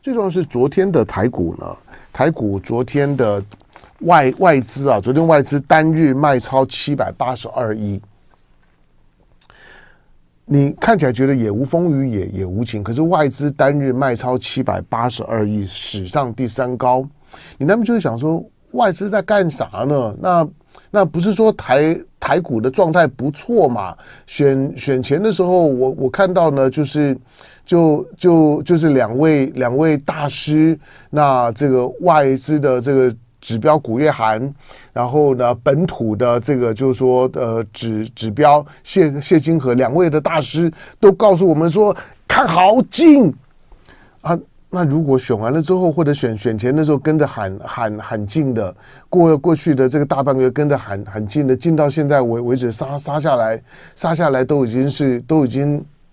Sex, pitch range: male, 120-155 Hz